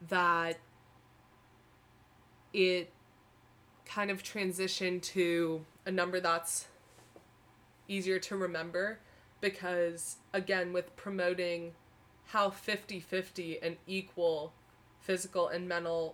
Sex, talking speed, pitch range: female, 85 wpm, 160-195 Hz